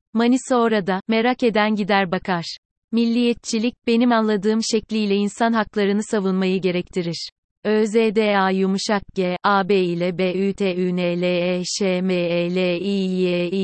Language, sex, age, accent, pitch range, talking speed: Turkish, female, 30-49, native, 190-230 Hz, 135 wpm